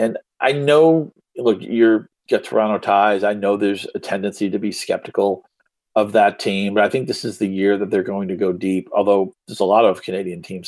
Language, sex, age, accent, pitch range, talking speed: English, male, 40-59, American, 100-110 Hz, 220 wpm